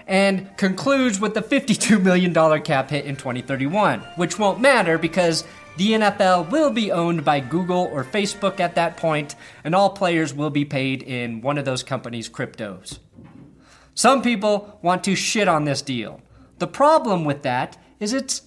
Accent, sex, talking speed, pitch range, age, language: American, male, 170 wpm, 155-210 Hz, 30-49, English